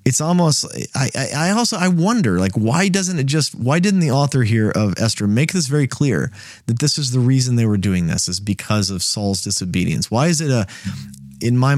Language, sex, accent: English, male, American